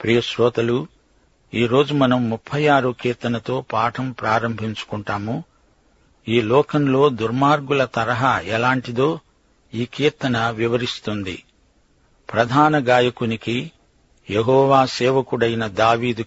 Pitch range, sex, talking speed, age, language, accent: 115-140 Hz, male, 80 wpm, 50-69, Telugu, native